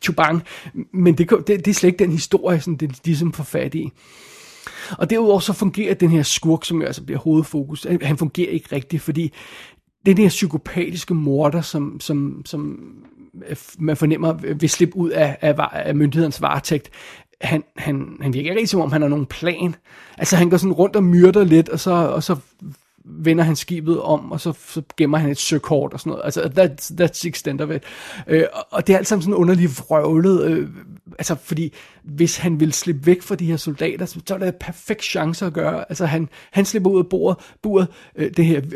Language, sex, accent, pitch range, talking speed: Danish, male, native, 155-185 Hz, 200 wpm